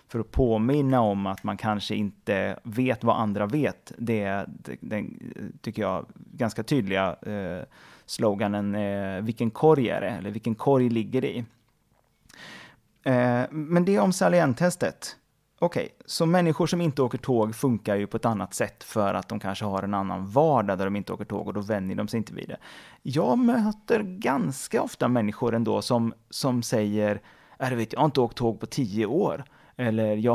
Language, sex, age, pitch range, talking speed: Swedish, male, 30-49, 105-135 Hz, 185 wpm